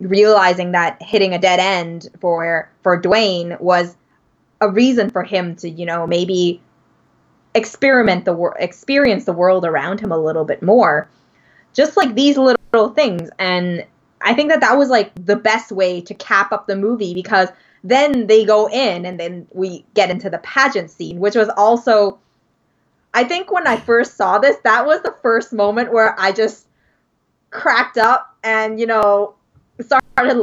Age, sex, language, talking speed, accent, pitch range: 20-39, female, English, 175 wpm, American, 185-260 Hz